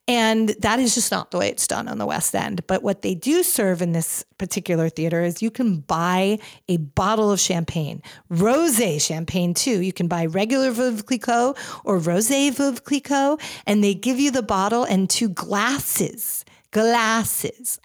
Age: 40-59